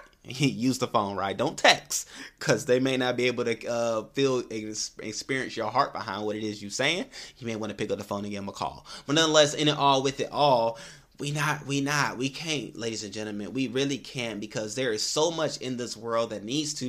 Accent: American